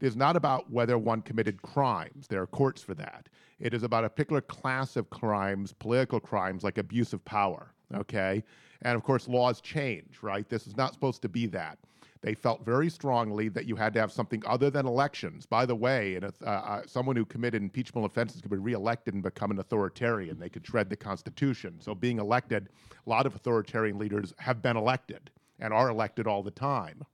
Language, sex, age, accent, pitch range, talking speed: English, male, 40-59, American, 115-140 Hz, 205 wpm